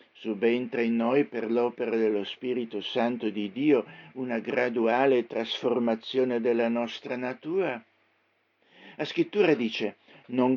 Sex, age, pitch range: male, 60-79, 110-130 Hz